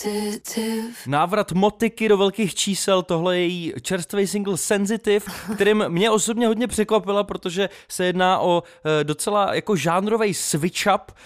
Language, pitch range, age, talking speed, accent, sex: Czech, 160-195 Hz, 20-39, 130 wpm, native, male